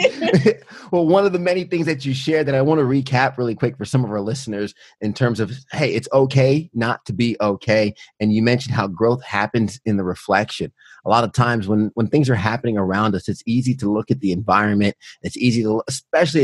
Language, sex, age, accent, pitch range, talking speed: English, male, 30-49, American, 105-130 Hz, 225 wpm